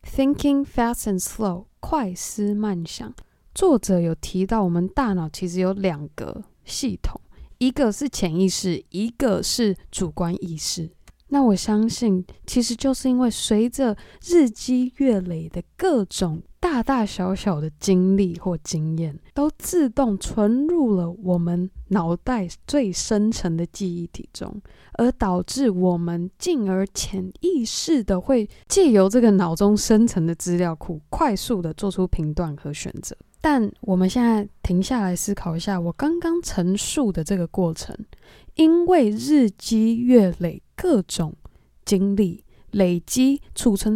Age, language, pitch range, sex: 20-39, Chinese, 180-250 Hz, female